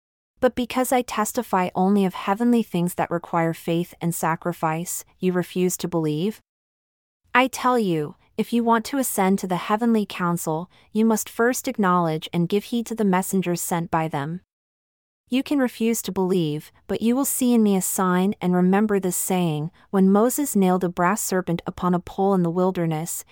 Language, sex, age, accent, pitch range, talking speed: English, female, 30-49, American, 170-210 Hz, 185 wpm